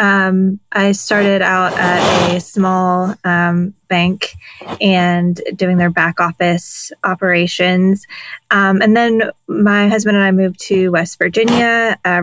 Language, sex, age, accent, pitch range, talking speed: English, female, 20-39, American, 185-215 Hz, 130 wpm